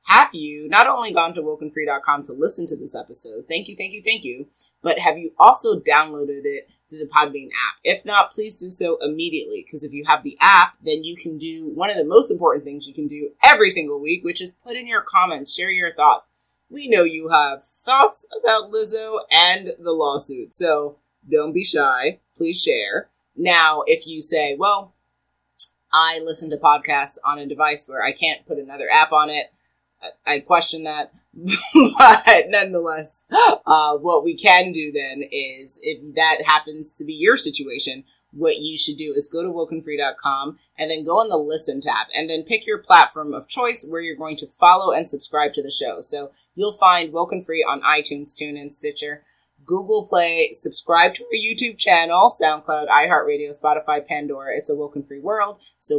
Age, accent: 30-49, American